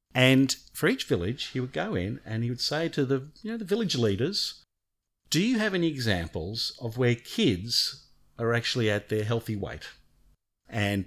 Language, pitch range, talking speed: English, 105-140 Hz, 185 wpm